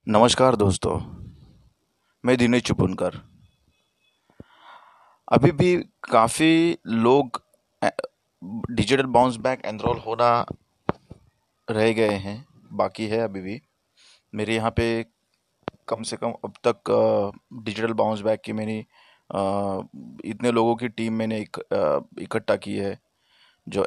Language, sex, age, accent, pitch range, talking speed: Hindi, male, 30-49, native, 115-160 Hz, 110 wpm